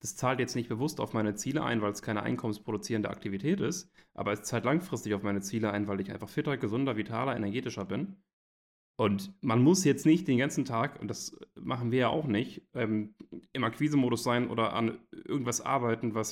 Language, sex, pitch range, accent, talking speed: German, male, 105-130 Hz, German, 200 wpm